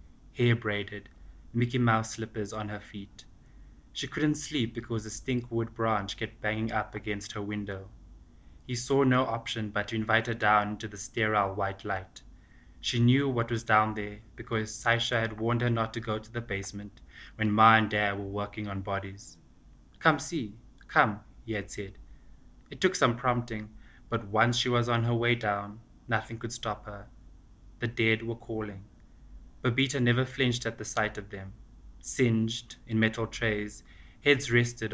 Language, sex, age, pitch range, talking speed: English, male, 20-39, 100-120 Hz, 170 wpm